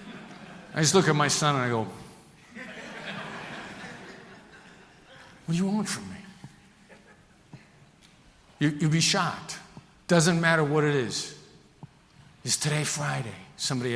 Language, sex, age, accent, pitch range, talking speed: English, male, 50-69, American, 135-175 Hz, 120 wpm